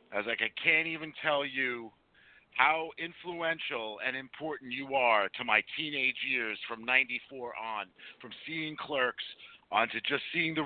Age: 50-69